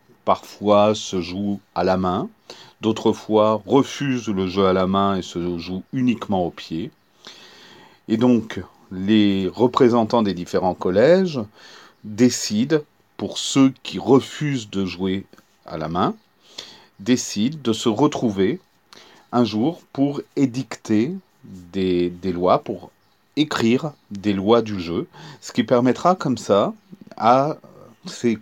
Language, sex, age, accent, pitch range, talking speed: French, male, 40-59, French, 100-130 Hz, 130 wpm